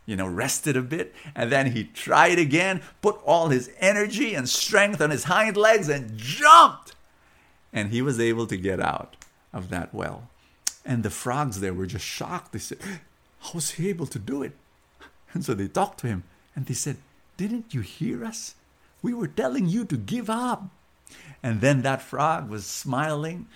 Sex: male